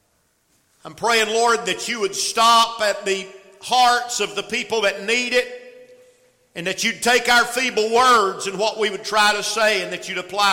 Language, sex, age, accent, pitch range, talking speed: English, male, 50-69, American, 190-250 Hz, 195 wpm